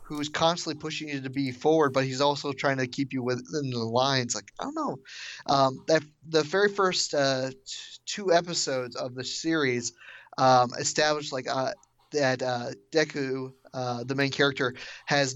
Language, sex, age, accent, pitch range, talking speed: English, male, 30-49, American, 125-150 Hz, 175 wpm